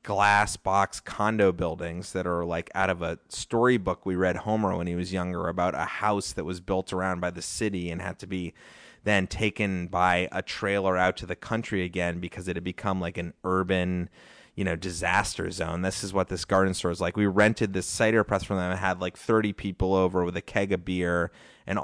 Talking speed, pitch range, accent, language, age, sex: 220 wpm, 90-105 Hz, American, English, 30-49, male